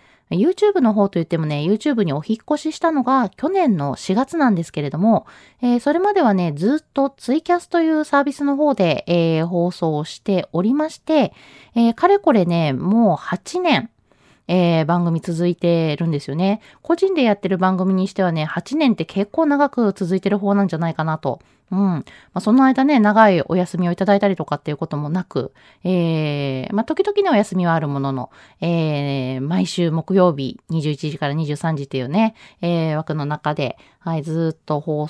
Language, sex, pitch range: Japanese, female, 165-250 Hz